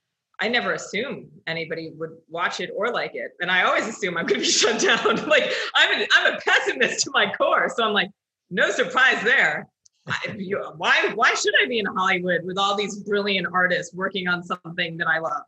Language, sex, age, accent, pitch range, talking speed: English, female, 30-49, American, 170-235 Hz, 215 wpm